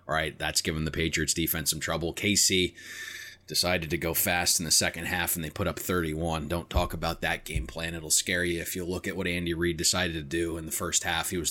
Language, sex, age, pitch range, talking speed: English, male, 30-49, 80-95 Hz, 250 wpm